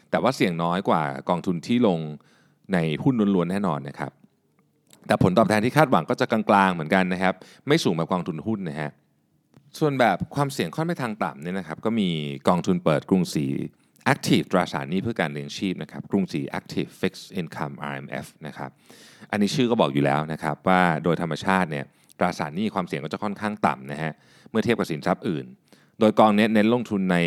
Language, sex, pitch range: Thai, male, 80-105 Hz